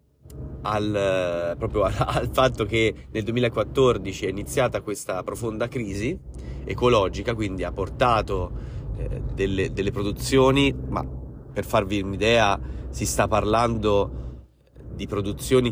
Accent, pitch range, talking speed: native, 100-120 Hz, 110 wpm